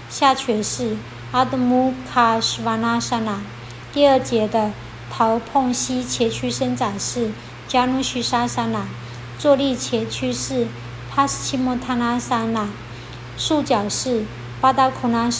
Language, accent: Chinese, American